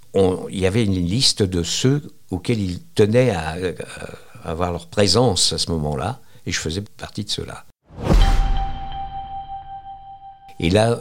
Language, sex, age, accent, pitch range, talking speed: French, male, 60-79, French, 85-110 Hz, 145 wpm